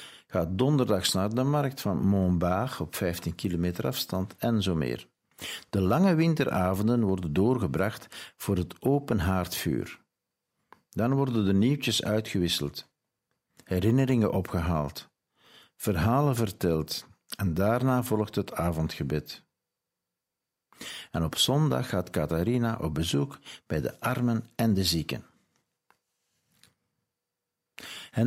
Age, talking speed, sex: 60-79, 110 wpm, male